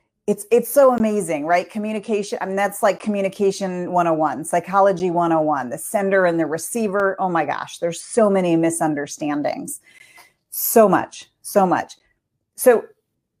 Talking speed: 140 wpm